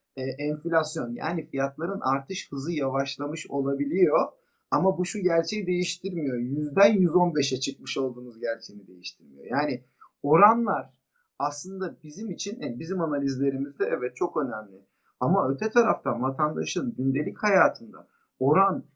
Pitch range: 145-200 Hz